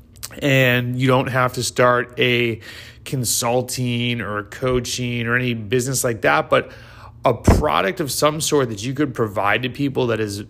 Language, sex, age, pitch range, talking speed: English, male, 30-49, 110-135 Hz, 165 wpm